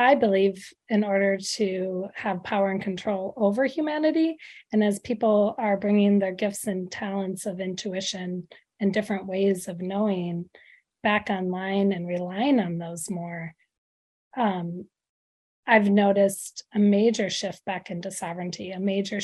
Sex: female